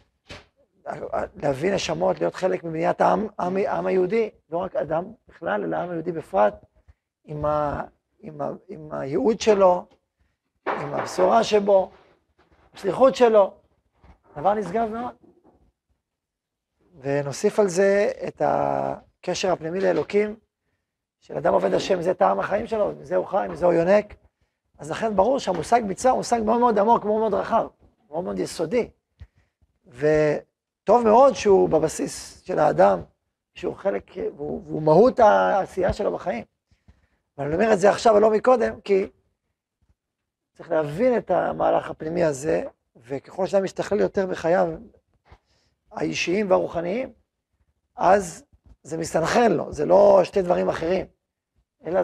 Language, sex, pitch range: Hebrew, male, 160-215 Hz